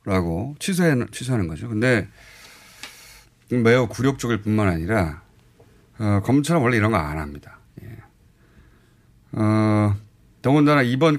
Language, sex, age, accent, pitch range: Korean, male, 30-49, native, 100-140 Hz